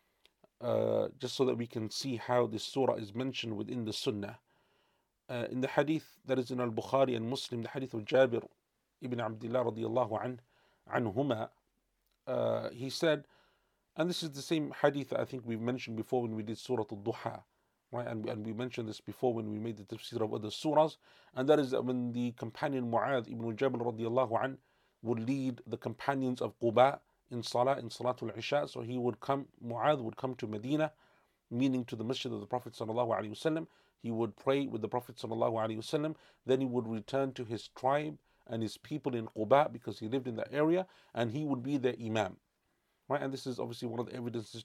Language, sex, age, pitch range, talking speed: English, male, 40-59, 115-140 Hz, 200 wpm